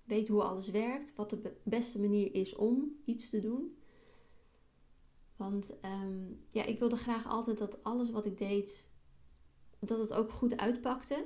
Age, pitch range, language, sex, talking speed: 30-49, 205-240 Hz, Dutch, female, 150 wpm